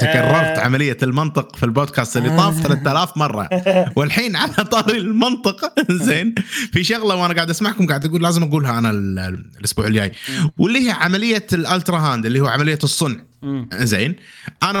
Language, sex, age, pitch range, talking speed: Arabic, male, 30-49, 130-195 Hz, 150 wpm